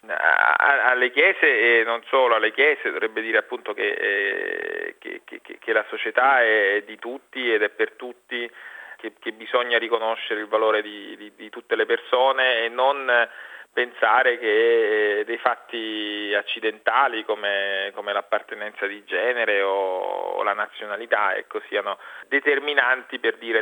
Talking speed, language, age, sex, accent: 145 wpm, Italian, 40-59, male, native